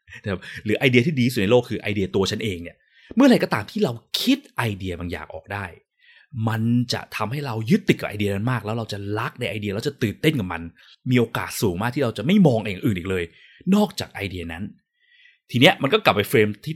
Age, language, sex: 20-39, Thai, male